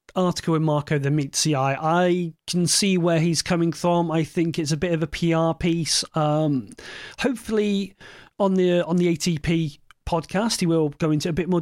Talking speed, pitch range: 190 wpm, 165-210 Hz